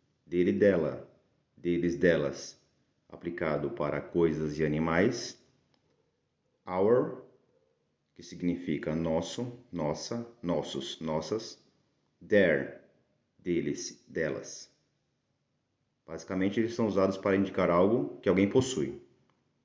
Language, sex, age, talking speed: Portuguese, male, 40-59, 90 wpm